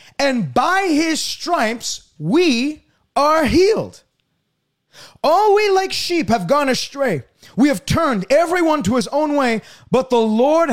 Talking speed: 140 wpm